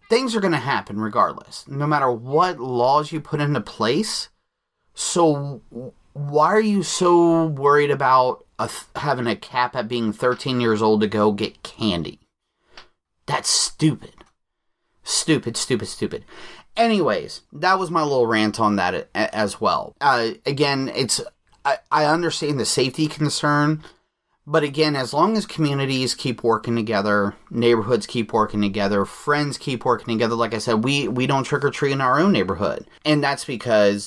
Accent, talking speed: American, 160 wpm